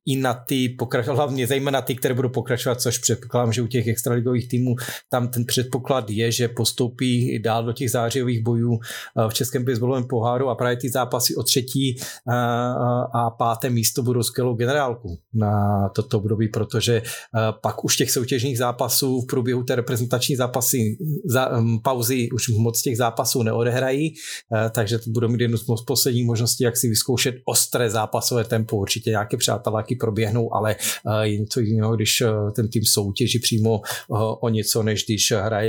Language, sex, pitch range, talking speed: Czech, male, 115-135 Hz, 160 wpm